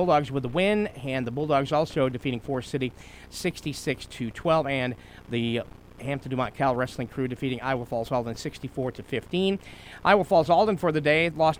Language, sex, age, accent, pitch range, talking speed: English, male, 40-59, American, 120-160 Hz, 180 wpm